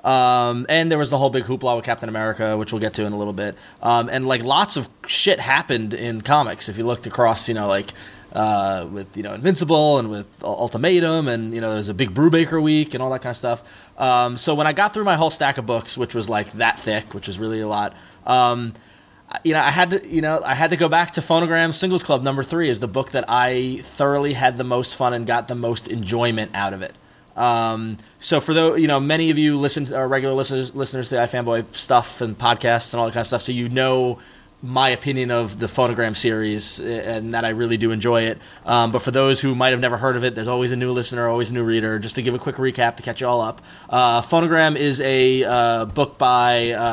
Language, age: English, 20-39